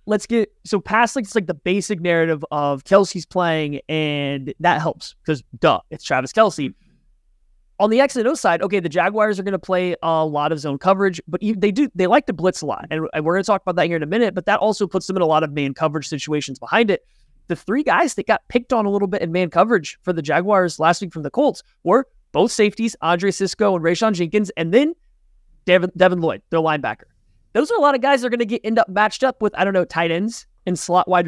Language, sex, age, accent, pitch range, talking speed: English, male, 20-39, American, 160-210 Hz, 255 wpm